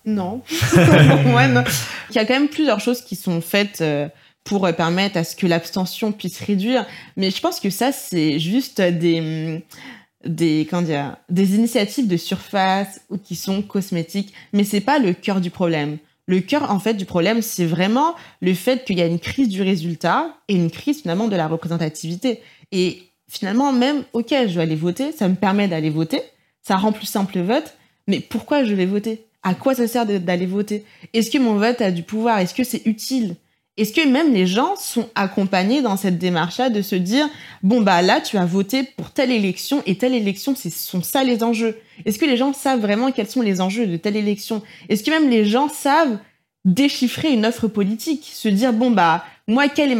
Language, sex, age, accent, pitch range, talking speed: French, female, 20-39, French, 180-245 Hz, 210 wpm